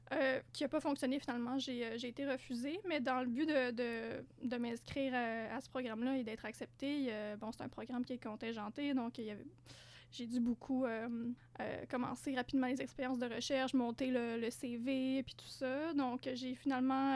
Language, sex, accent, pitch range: French, female, Canadian, 240-270 Hz